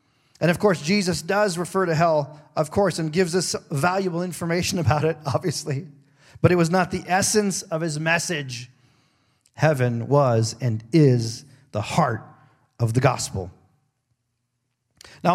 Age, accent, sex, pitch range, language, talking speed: 40-59, American, male, 135-170 Hz, English, 145 wpm